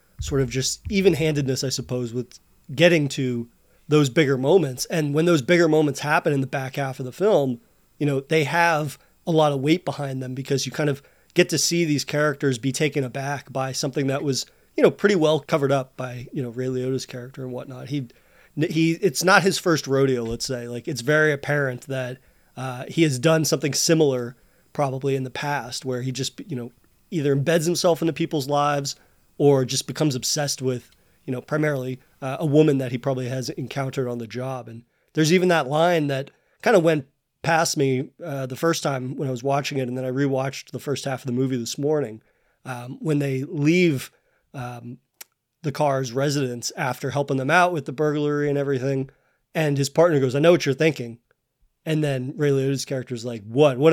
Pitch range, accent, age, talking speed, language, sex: 130-155 Hz, American, 30-49, 205 wpm, English, male